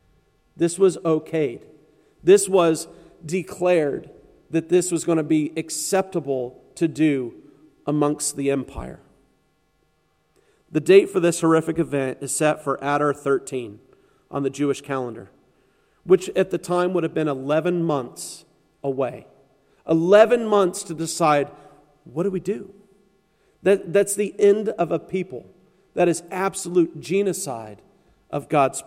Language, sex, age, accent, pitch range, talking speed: English, male, 40-59, American, 145-195 Hz, 130 wpm